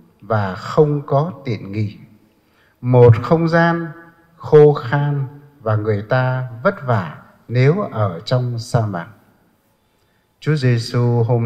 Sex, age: male, 60-79